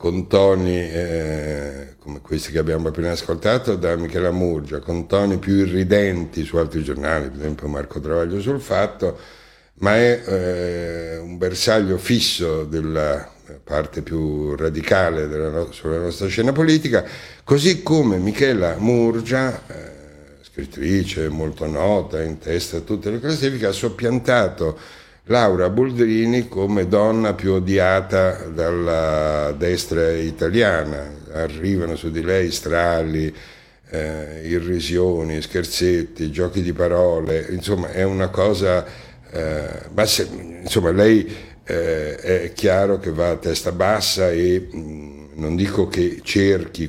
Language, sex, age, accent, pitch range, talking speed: Italian, male, 60-79, native, 80-95 Hz, 120 wpm